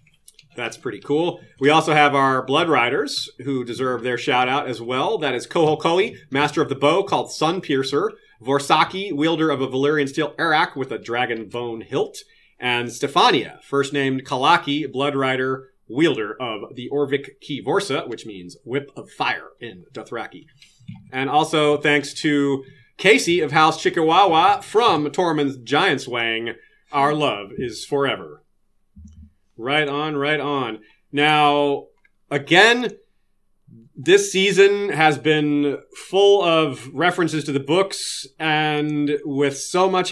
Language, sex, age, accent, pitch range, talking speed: English, male, 30-49, American, 130-160 Hz, 135 wpm